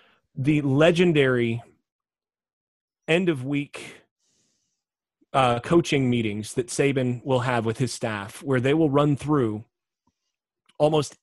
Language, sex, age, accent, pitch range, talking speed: English, male, 30-49, American, 130-165 Hz, 95 wpm